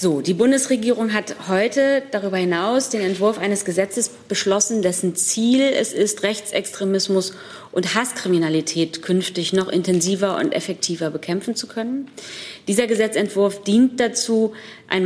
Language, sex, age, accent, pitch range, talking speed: German, female, 30-49, German, 170-200 Hz, 125 wpm